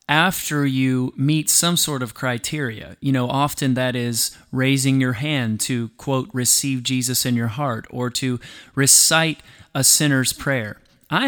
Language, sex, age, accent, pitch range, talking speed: English, male, 30-49, American, 125-145 Hz, 155 wpm